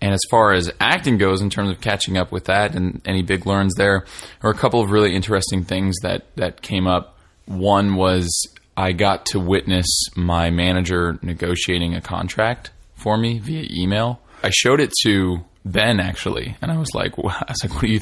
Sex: male